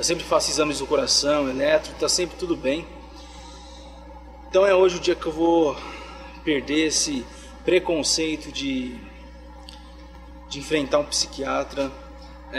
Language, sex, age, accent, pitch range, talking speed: Portuguese, male, 20-39, Brazilian, 135-165 Hz, 130 wpm